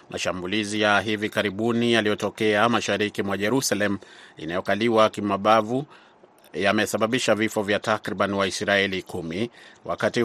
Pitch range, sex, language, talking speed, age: 95-115 Hz, male, Swahili, 100 wpm, 30-49